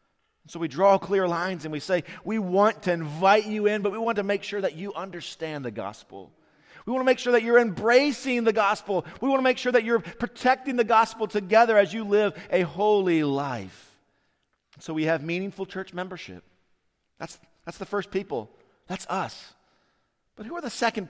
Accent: American